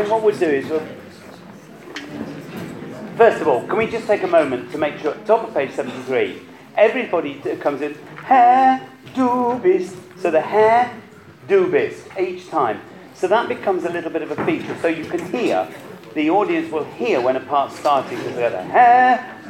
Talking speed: 175 wpm